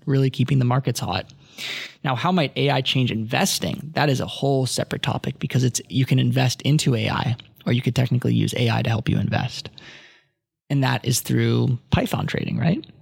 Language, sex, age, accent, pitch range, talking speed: English, male, 20-39, American, 120-145 Hz, 190 wpm